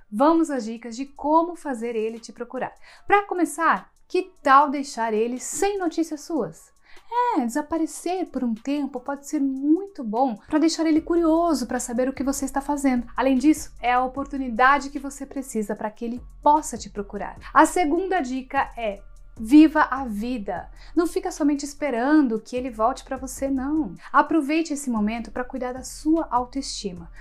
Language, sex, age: Portuguese, female, 30-49